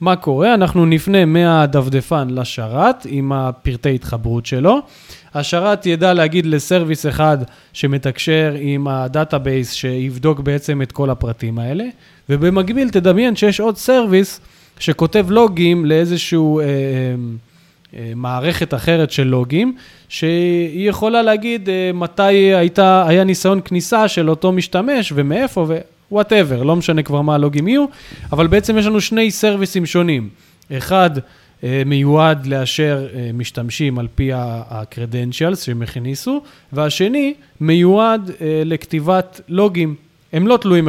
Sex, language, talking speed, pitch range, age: male, Hebrew, 130 wpm, 135-185 Hz, 20-39